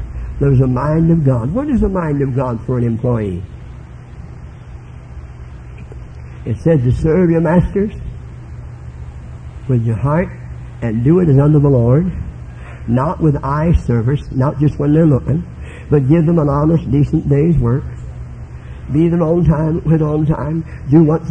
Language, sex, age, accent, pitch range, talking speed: English, male, 60-79, American, 115-160 Hz, 160 wpm